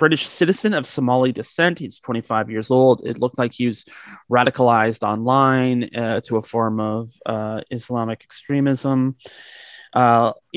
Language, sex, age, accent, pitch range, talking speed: English, male, 30-49, American, 115-135 Hz, 140 wpm